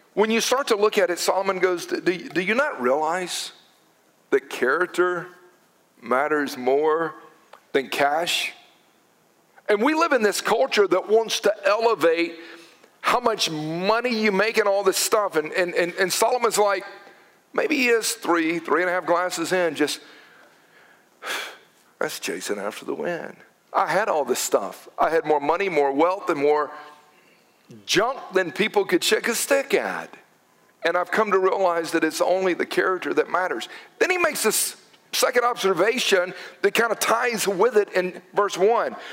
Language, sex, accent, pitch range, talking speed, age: English, male, American, 180-235 Hz, 170 wpm, 50-69